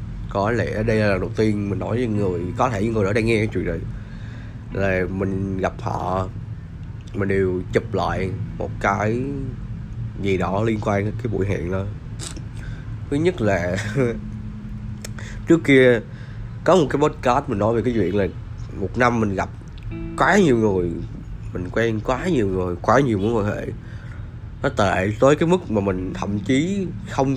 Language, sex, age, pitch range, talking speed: Vietnamese, male, 20-39, 100-120 Hz, 180 wpm